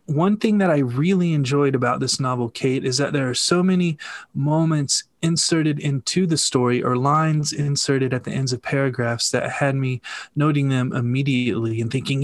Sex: male